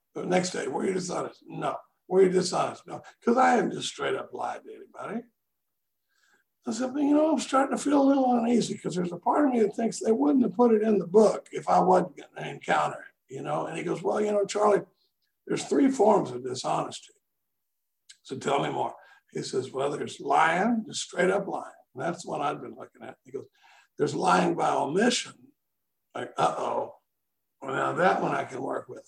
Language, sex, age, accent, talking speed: English, male, 60-79, American, 220 wpm